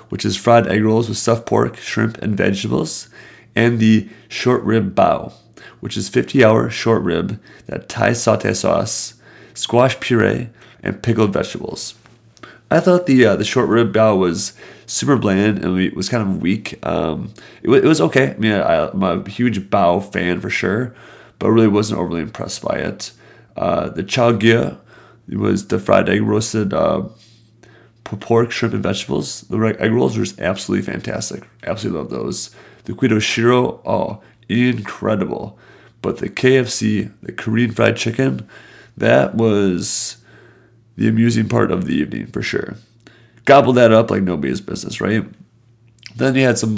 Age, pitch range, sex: 30-49, 110-120 Hz, male